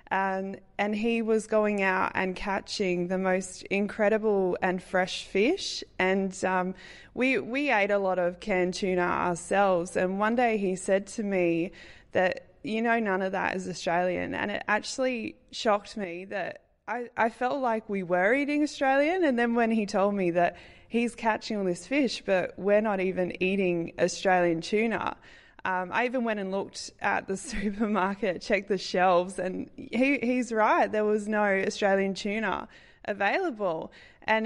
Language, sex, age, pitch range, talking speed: English, female, 20-39, 185-220 Hz, 165 wpm